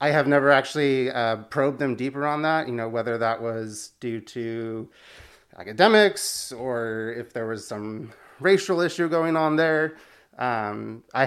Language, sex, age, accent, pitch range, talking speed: English, male, 30-49, American, 110-135 Hz, 160 wpm